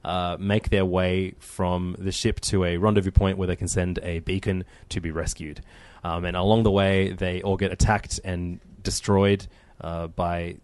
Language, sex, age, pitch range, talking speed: English, male, 20-39, 90-100 Hz, 185 wpm